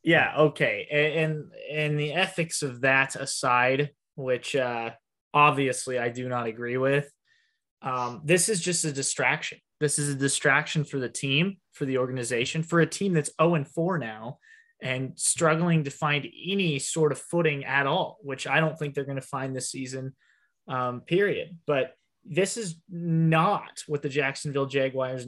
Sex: male